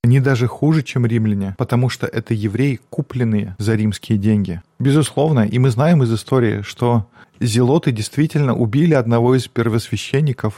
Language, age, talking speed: Russian, 20-39, 150 wpm